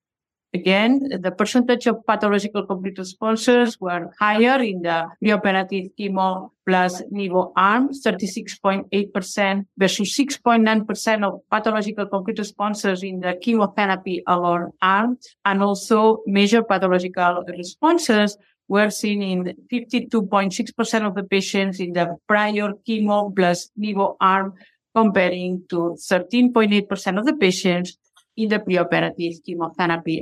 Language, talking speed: English, 115 wpm